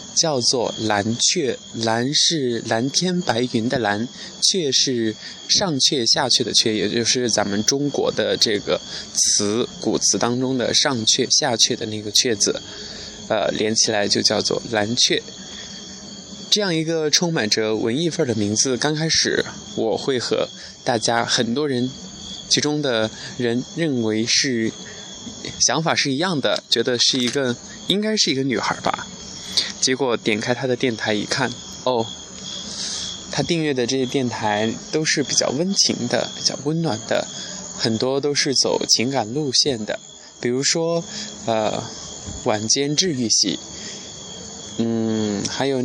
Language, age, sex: Chinese, 20-39, male